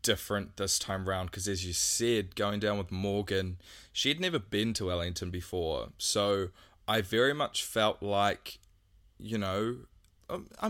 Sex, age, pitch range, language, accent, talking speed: male, 20-39, 95-115 Hz, English, Australian, 150 wpm